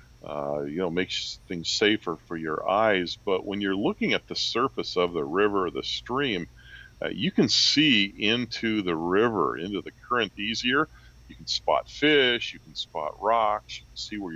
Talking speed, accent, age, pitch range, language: 190 wpm, American, 40-59, 70-110 Hz, English